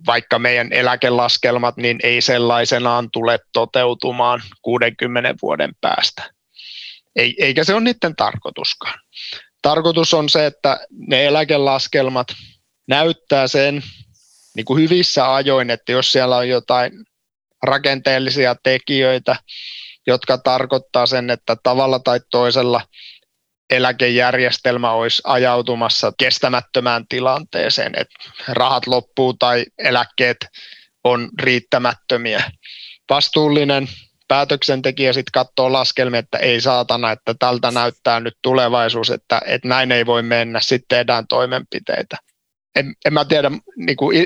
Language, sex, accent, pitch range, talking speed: Finnish, male, native, 120-140 Hz, 110 wpm